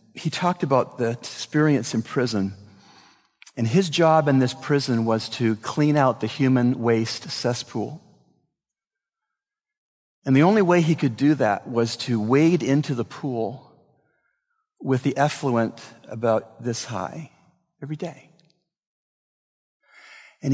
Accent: American